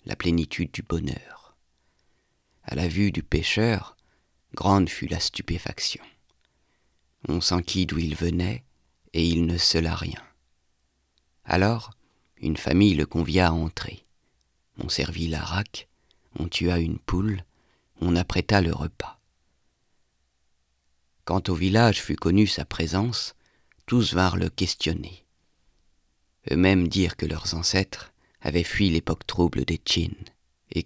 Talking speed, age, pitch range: 130 wpm, 50-69, 75-95 Hz